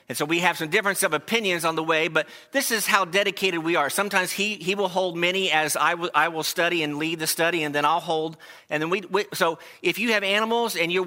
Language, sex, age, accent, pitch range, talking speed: English, male, 50-69, American, 150-190 Hz, 265 wpm